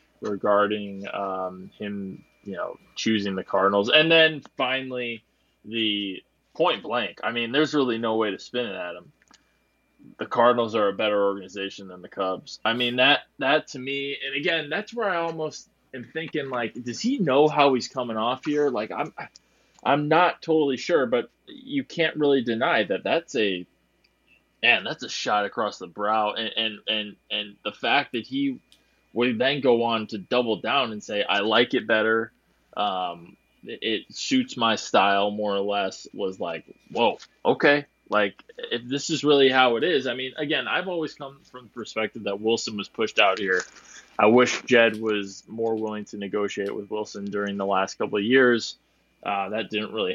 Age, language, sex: 20-39, English, male